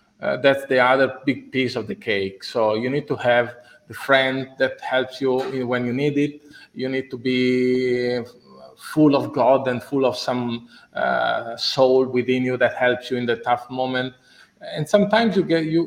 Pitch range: 120-145 Hz